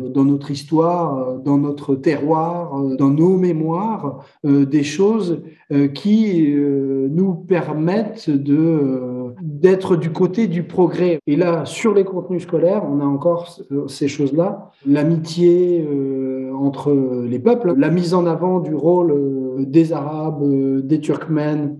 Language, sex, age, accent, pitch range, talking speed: French, male, 40-59, French, 140-185 Hz, 140 wpm